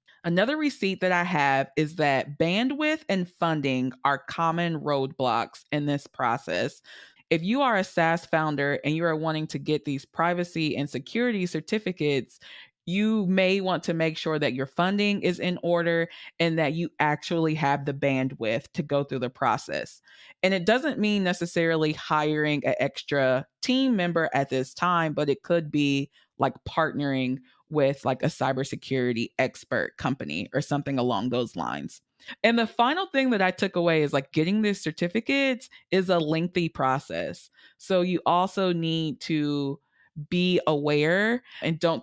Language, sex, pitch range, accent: English, female, 140-180 Hz, American